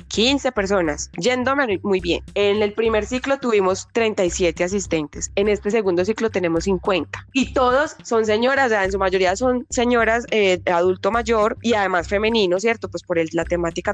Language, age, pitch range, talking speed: Spanish, 10-29, 180-220 Hz, 180 wpm